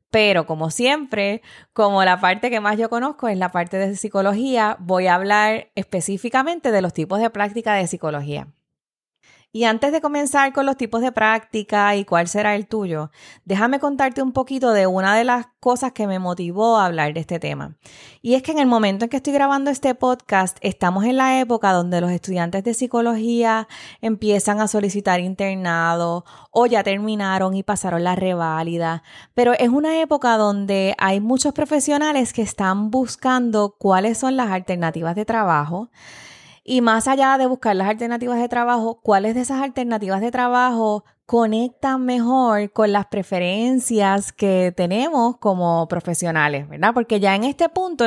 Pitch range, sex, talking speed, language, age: 190-250 Hz, female, 170 wpm, Spanish, 20-39